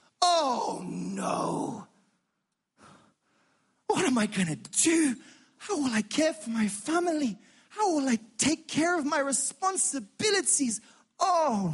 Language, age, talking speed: English, 30-49, 125 wpm